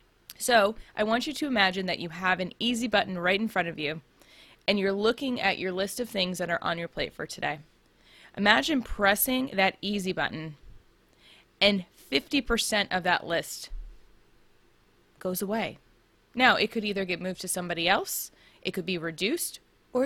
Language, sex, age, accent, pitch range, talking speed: English, female, 20-39, American, 185-255 Hz, 175 wpm